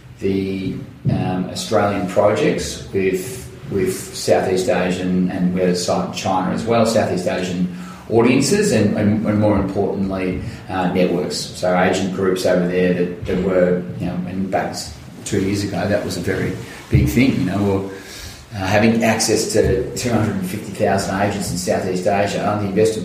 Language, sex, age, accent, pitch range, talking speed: English, male, 30-49, Australian, 90-105 Hz, 160 wpm